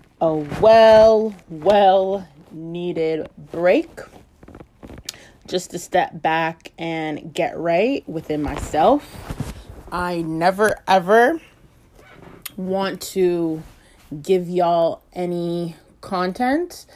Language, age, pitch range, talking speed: English, 30-49, 165-215 Hz, 80 wpm